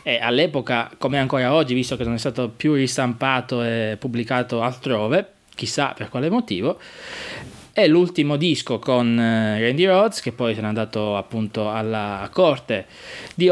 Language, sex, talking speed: Italian, male, 150 wpm